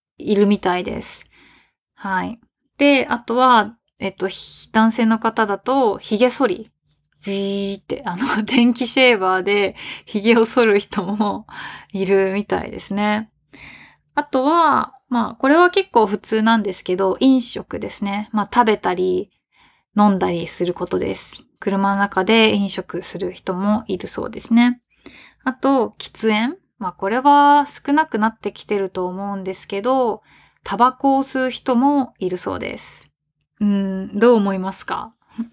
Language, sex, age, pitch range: Japanese, female, 20-39, 195-240 Hz